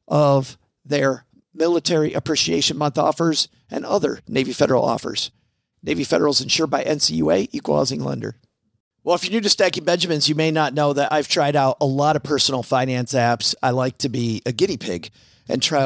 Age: 50-69